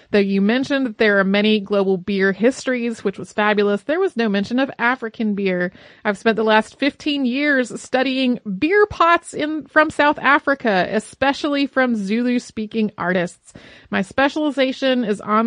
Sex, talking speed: female, 160 wpm